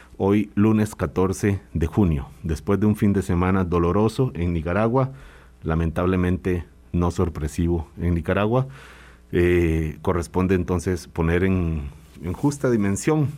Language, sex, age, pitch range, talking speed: Spanish, male, 40-59, 80-100 Hz, 120 wpm